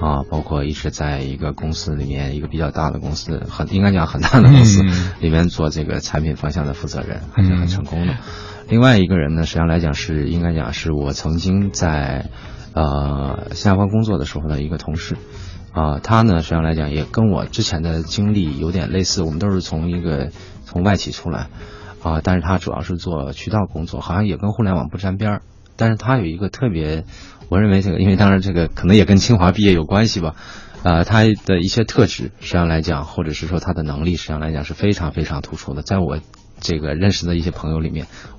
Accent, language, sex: native, Chinese, male